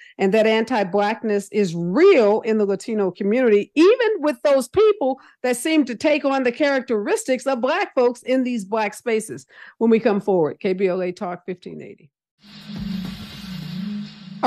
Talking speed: 140 wpm